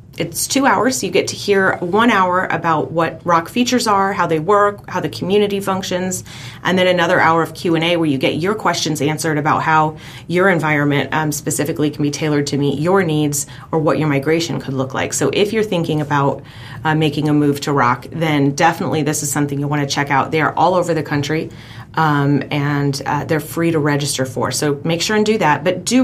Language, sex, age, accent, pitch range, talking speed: English, female, 30-49, American, 145-180 Hz, 225 wpm